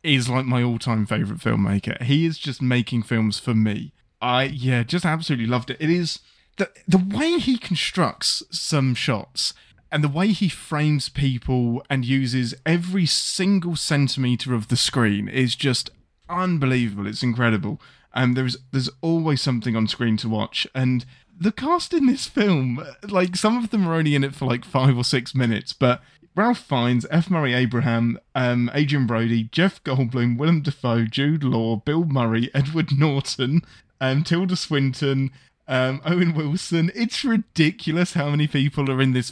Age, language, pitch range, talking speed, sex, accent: 20-39, English, 125-170 Hz, 165 wpm, male, British